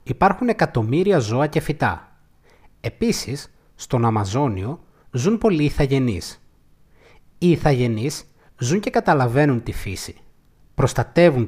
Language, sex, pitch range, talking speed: Greek, male, 120-170 Hz, 100 wpm